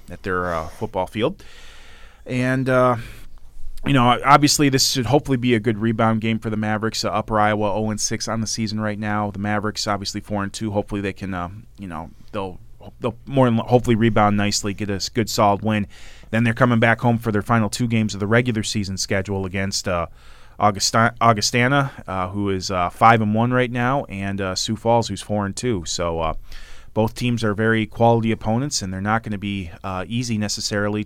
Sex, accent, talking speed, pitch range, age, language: male, American, 210 wpm, 100-115 Hz, 30-49, English